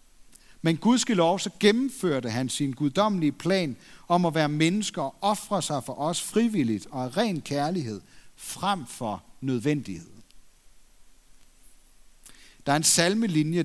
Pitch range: 135-180 Hz